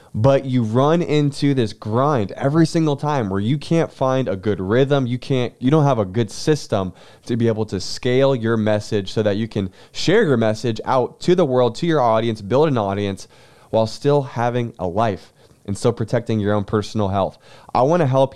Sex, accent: male, American